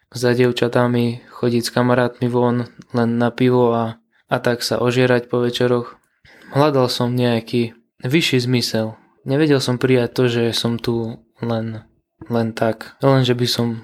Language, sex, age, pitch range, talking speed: Slovak, male, 20-39, 120-130 Hz, 150 wpm